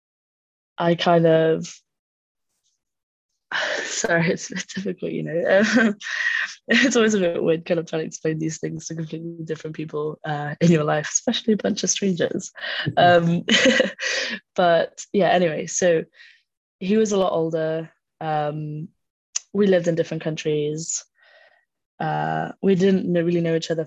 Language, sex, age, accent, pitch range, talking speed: English, female, 20-39, British, 155-175 Hz, 145 wpm